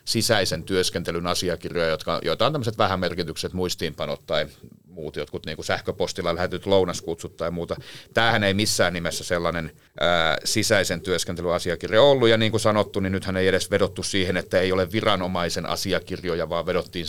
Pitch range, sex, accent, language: 90-110 Hz, male, native, Finnish